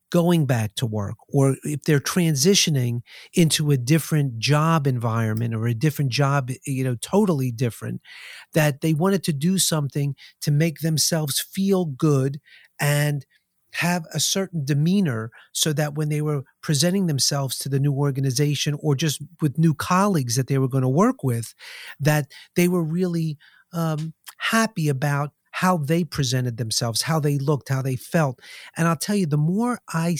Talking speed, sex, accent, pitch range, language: 165 wpm, male, American, 135-165 Hz, English